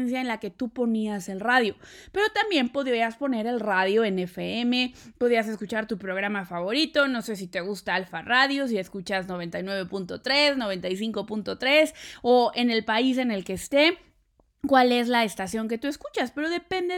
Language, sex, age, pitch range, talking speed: Spanish, female, 20-39, 220-290 Hz, 170 wpm